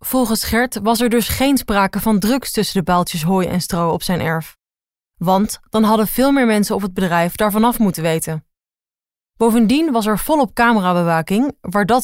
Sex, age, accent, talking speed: female, 20-39, Dutch, 190 wpm